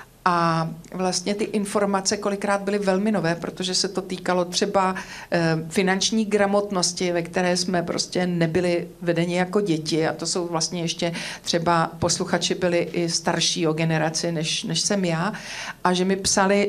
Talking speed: 155 wpm